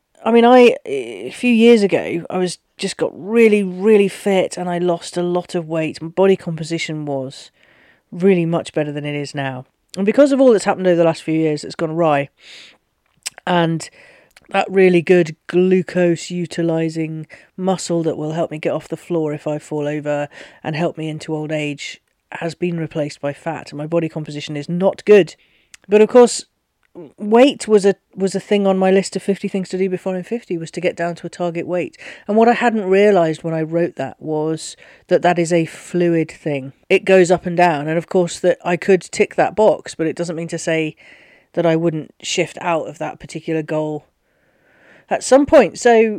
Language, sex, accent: English, female, British